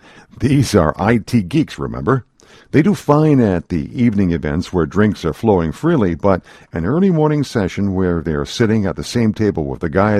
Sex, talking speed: male, 190 wpm